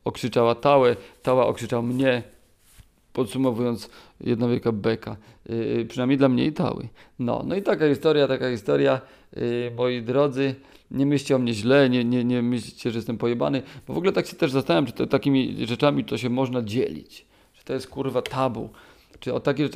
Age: 40-59